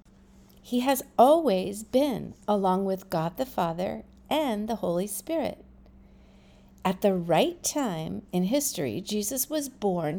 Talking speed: 130 wpm